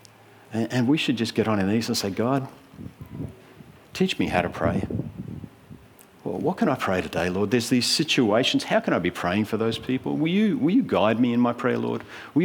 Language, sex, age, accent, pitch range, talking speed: English, male, 50-69, Australian, 95-120 Hz, 215 wpm